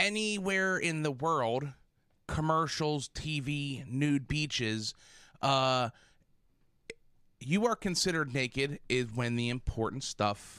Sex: male